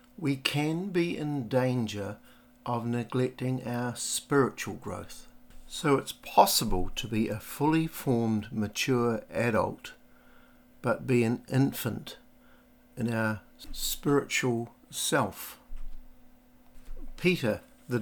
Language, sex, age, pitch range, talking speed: English, male, 60-79, 110-130 Hz, 100 wpm